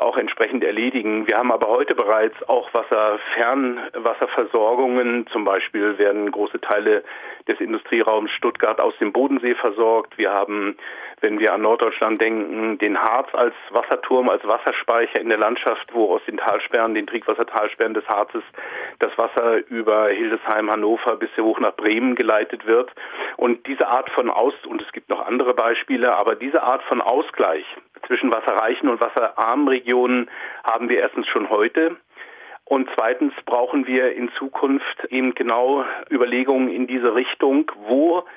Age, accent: 40-59, German